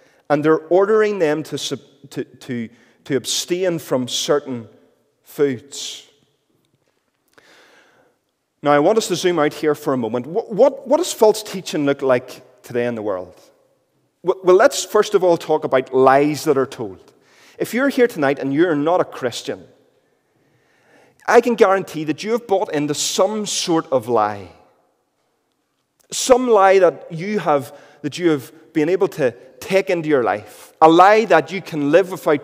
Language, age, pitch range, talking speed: English, 30-49, 145-195 Hz, 165 wpm